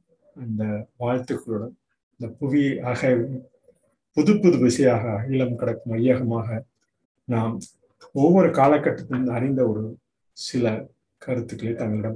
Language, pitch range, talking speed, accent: Tamil, 120-150 Hz, 80 wpm, native